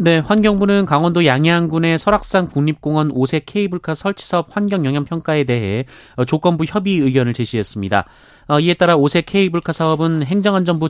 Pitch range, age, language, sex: 130-175 Hz, 30-49, Korean, male